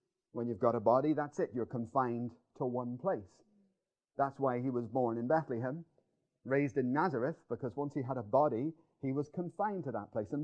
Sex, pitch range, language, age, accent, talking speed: male, 145-245 Hz, English, 40-59, British, 200 wpm